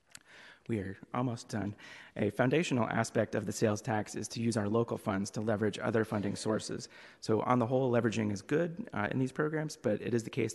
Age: 30-49